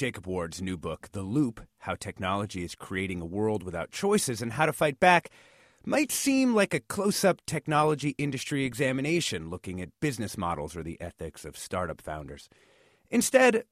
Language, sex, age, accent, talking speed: English, male, 30-49, American, 165 wpm